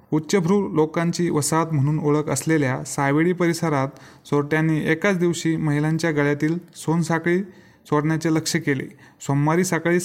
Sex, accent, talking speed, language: male, native, 115 wpm, Marathi